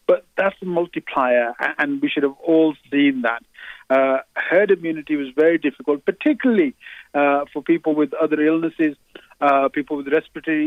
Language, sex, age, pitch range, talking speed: English, male, 50-69, 130-165 Hz, 160 wpm